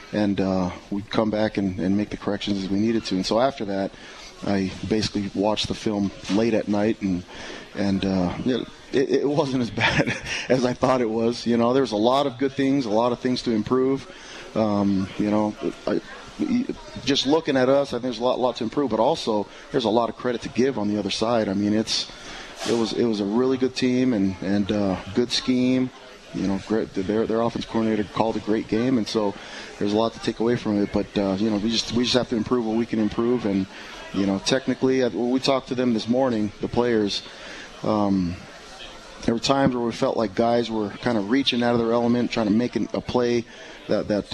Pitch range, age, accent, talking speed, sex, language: 105-125 Hz, 30-49, American, 230 wpm, male, English